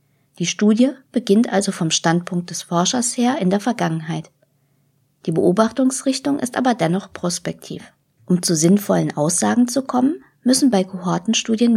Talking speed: 140 wpm